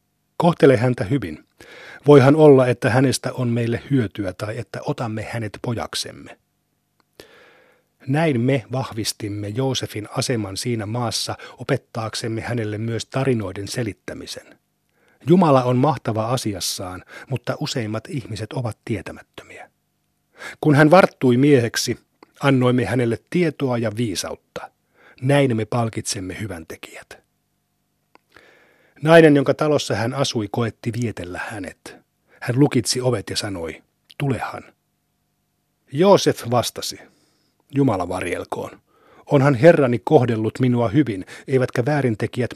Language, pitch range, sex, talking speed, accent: Finnish, 110-140 Hz, male, 105 wpm, native